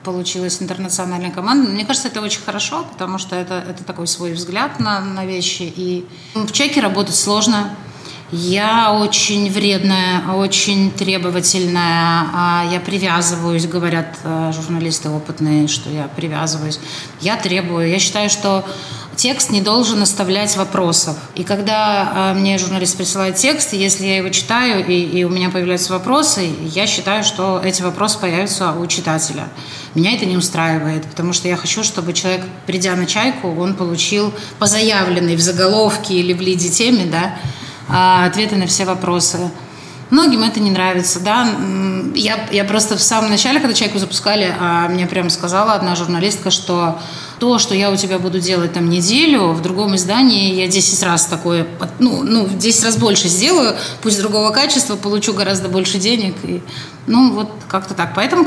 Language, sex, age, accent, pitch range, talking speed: Russian, female, 30-49, native, 175-210 Hz, 155 wpm